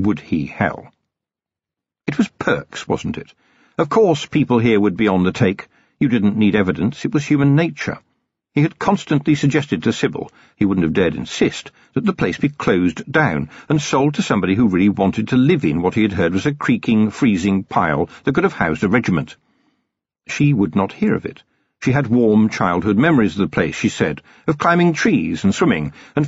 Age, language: 50-69, English